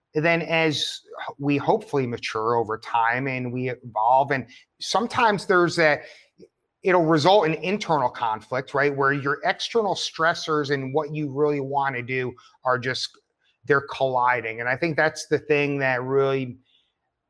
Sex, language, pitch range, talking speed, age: male, English, 125-150 Hz, 150 wpm, 30-49